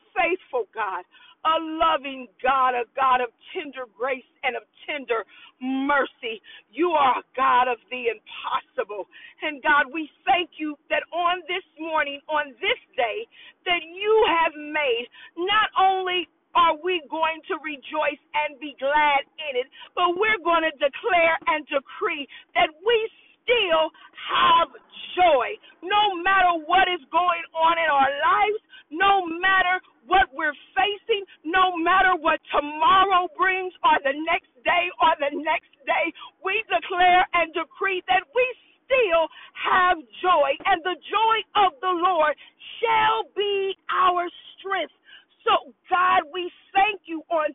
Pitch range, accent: 305-380 Hz, American